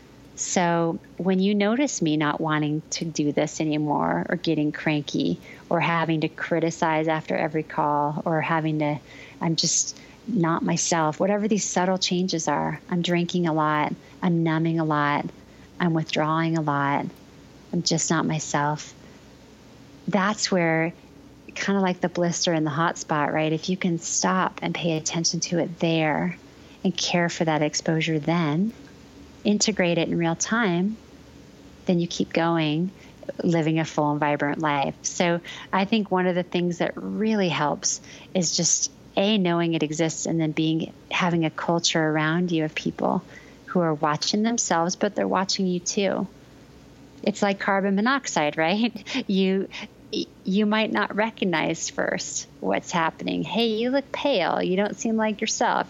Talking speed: 160 wpm